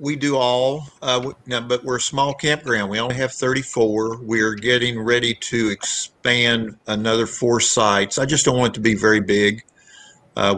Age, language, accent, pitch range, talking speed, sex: 50-69, English, American, 100-120 Hz, 175 wpm, male